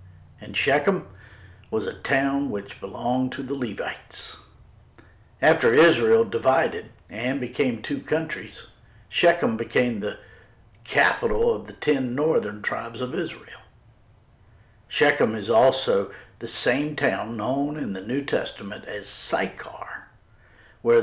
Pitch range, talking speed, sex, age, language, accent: 110-140 Hz, 120 wpm, male, 60-79, English, American